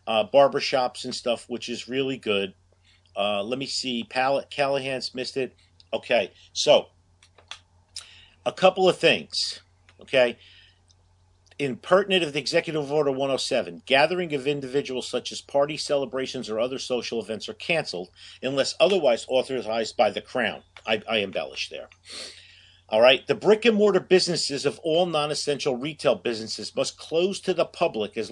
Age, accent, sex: 50-69, American, male